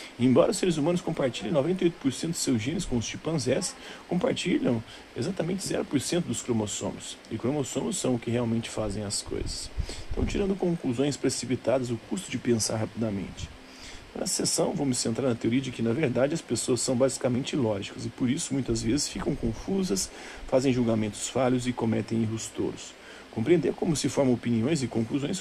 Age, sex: 40-59, male